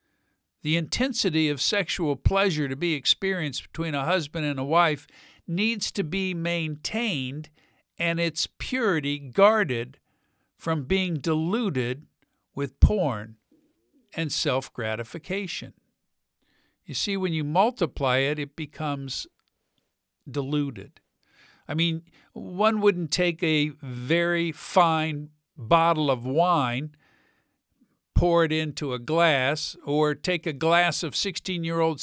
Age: 50-69